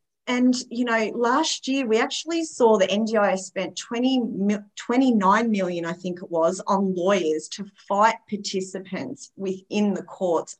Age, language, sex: 30-49, English, female